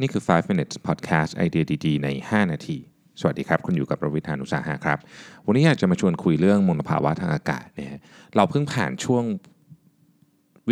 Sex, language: male, Thai